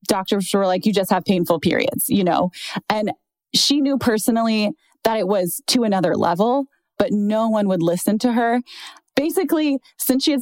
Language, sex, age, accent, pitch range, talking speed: English, female, 20-39, American, 175-215 Hz, 180 wpm